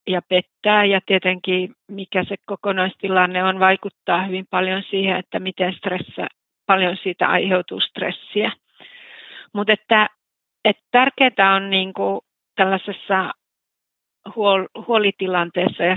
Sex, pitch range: female, 180-210 Hz